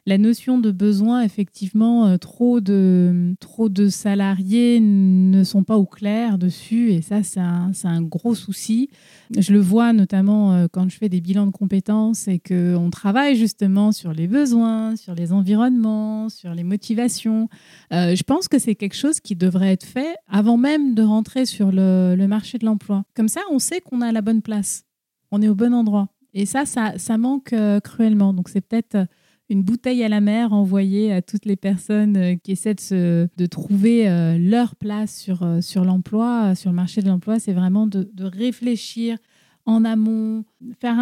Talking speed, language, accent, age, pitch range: 185 wpm, French, French, 30-49, 190-225 Hz